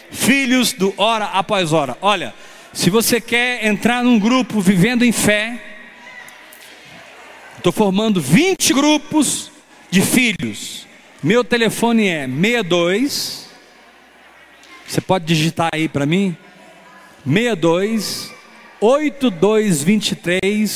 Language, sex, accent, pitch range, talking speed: Portuguese, male, Brazilian, 185-245 Hz, 95 wpm